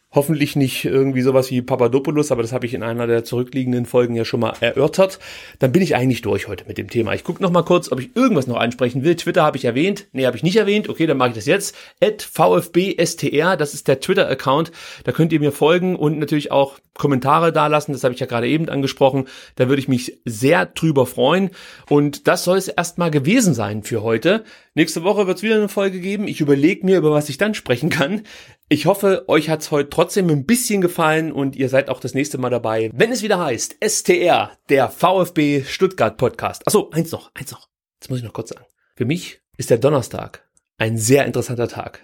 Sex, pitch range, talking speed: male, 130-170 Hz, 225 wpm